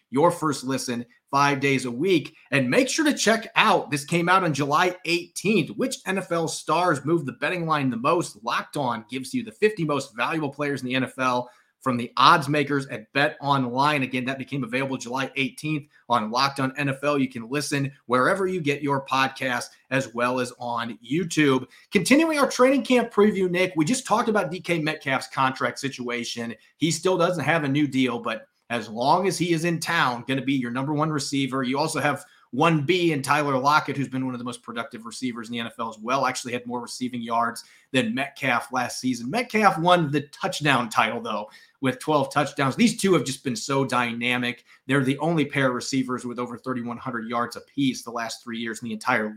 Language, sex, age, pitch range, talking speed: English, male, 30-49, 125-165 Hz, 205 wpm